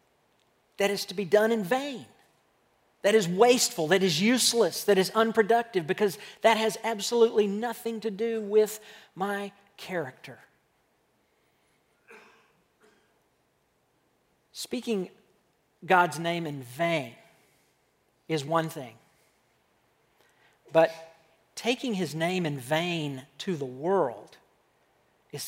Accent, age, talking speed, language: American, 50-69, 105 wpm, English